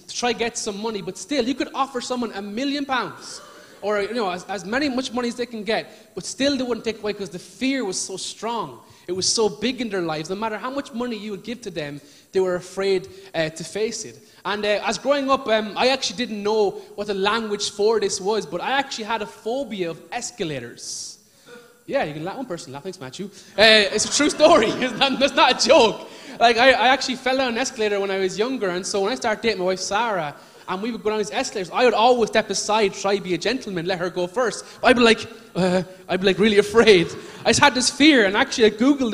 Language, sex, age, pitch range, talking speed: English, male, 20-39, 190-250 Hz, 255 wpm